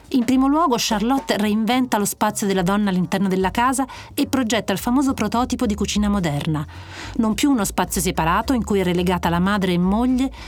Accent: native